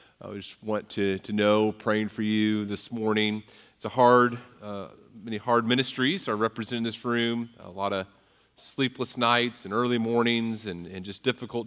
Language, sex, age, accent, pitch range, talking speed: English, male, 40-59, American, 100-120 Hz, 180 wpm